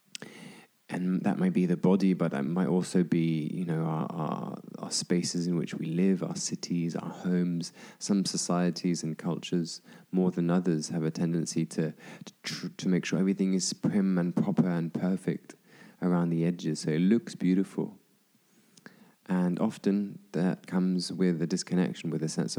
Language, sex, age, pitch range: English, male, 20-39, 85-95 Hz